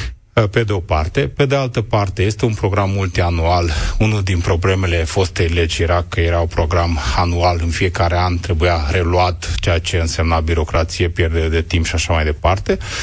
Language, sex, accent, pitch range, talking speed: Romanian, male, native, 90-110 Hz, 180 wpm